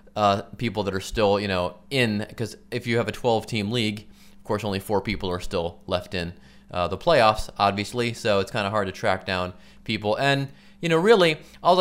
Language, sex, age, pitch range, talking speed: English, male, 30-49, 100-135 Hz, 215 wpm